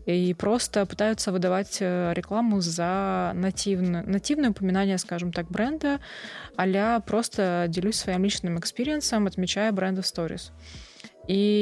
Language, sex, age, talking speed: Russian, female, 20-39, 115 wpm